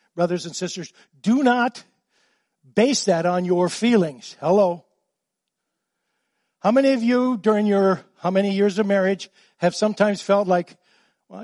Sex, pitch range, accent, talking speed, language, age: male, 170-220 Hz, American, 140 wpm, English, 60-79